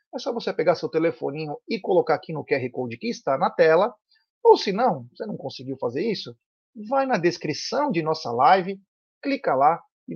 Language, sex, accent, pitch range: Portuguese, male, Brazilian, 150-240 Hz